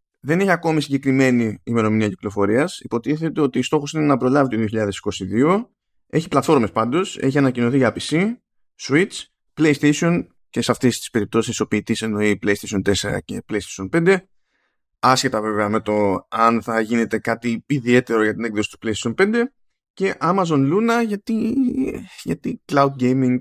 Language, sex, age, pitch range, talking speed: Greek, male, 20-39, 110-155 Hz, 150 wpm